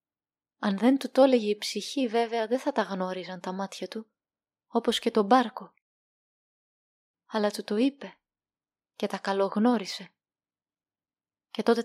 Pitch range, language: 210-245 Hz, Greek